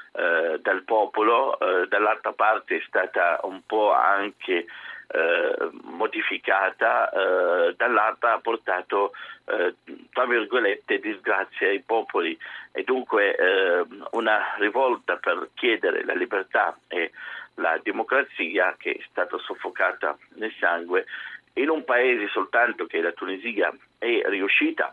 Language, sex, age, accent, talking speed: Italian, male, 50-69, native, 125 wpm